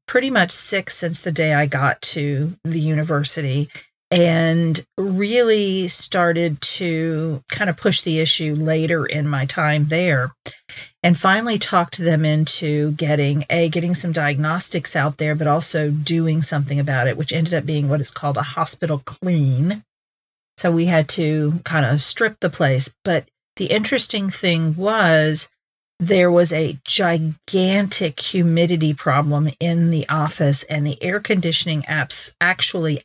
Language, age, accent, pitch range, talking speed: English, 50-69, American, 145-175 Hz, 150 wpm